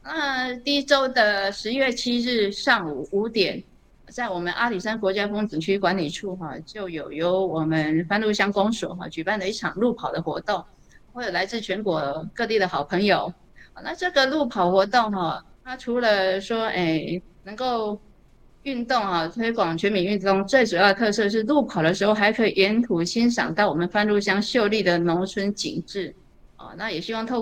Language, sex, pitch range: Chinese, female, 180-235 Hz